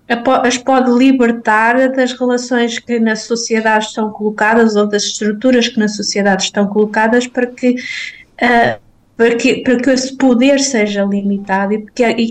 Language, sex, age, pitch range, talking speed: Portuguese, female, 20-39, 205-240 Hz, 145 wpm